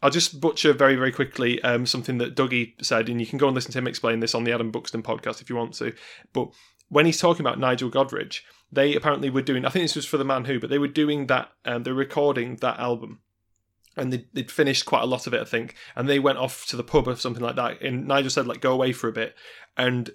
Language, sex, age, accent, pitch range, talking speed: English, male, 30-49, British, 125-145 Hz, 270 wpm